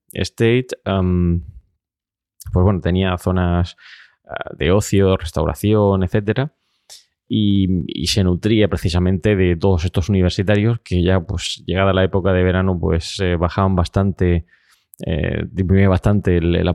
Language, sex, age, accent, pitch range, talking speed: Spanish, male, 20-39, Spanish, 90-110 Hz, 120 wpm